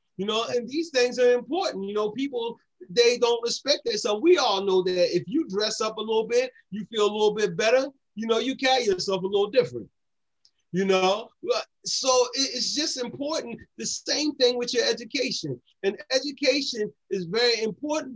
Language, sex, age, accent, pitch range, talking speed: English, male, 30-49, American, 210-275 Hz, 190 wpm